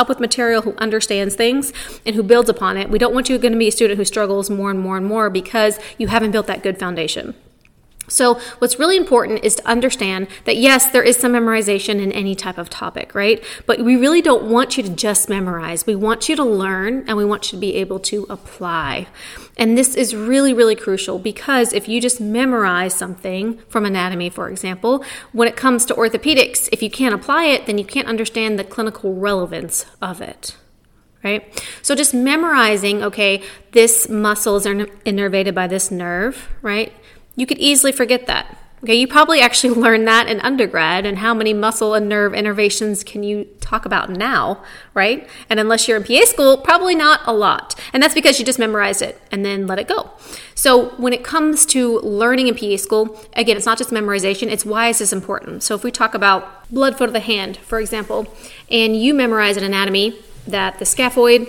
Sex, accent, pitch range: female, American, 200-245 Hz